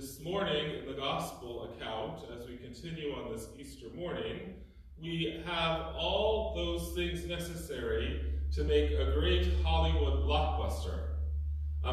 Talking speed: 130 wpm